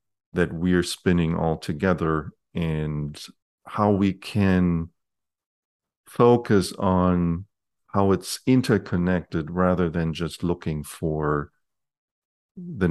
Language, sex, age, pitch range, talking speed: English, male, 50-69, 80-100 Hz, 100 wpm